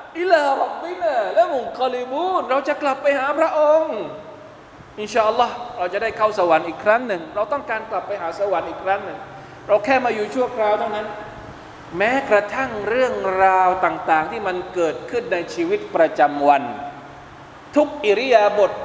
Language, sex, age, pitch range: Thai, male, 20-39, 165-255 Hz